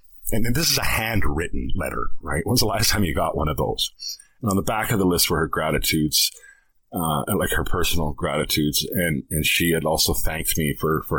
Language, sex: English, male